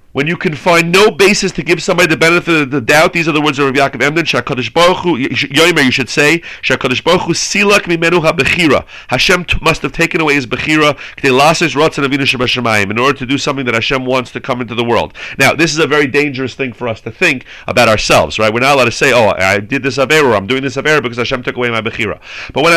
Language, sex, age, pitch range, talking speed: English, male, 40-59, 135-175 Hz, 250 wpm